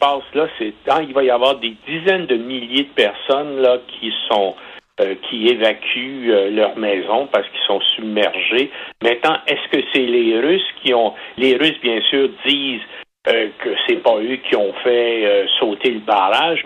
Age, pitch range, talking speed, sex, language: 60-79, 120-145 Hz, 185 wpm, male, French